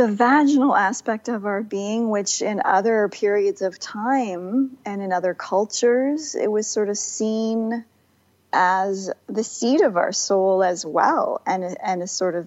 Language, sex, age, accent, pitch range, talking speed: English, female, 40-59, American, 185-220 Hz, 165 wpm